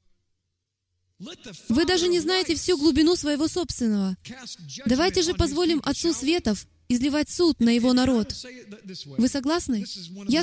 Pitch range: 210-310 Hz